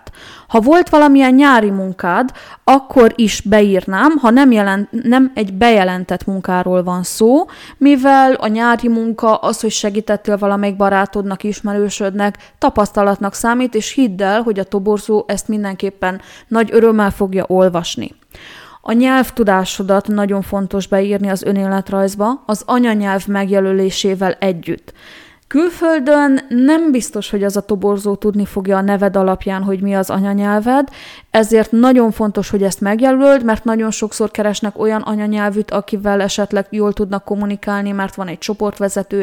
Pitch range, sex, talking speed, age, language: 195-225 Hz, female, 135 wpm, 20-39, Hungarian